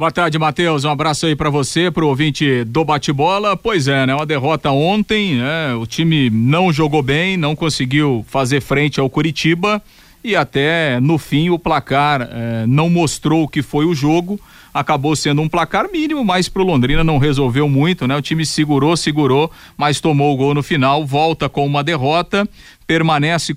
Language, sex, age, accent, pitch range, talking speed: Portuguese, male, 40-59, Brazilian, 135-165 Hz, 185 wpm